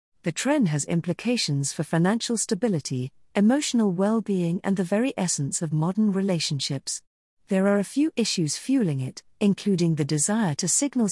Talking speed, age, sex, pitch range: 155 wpm, 50-69, female, 155-215 Hz